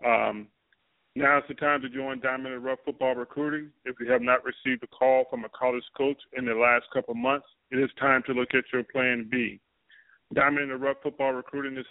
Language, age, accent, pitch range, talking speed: English, 40-59, American, 130-145 Hz, 220 wpm